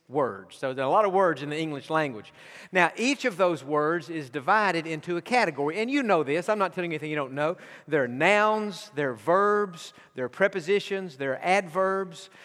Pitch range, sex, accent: 160-205 Hz, male, American